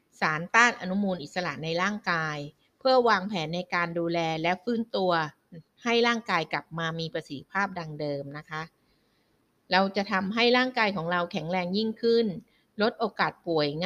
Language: Thai